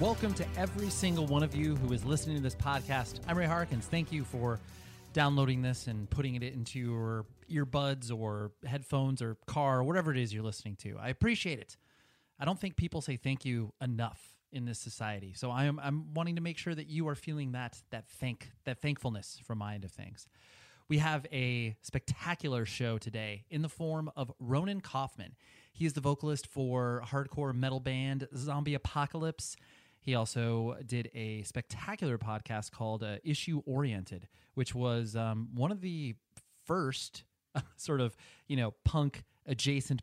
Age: 30-49